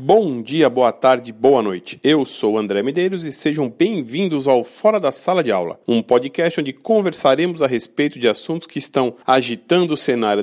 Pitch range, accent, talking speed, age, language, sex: 140-205 Hz, Brazilian, 190 wpm, 40-59, Portuguese, male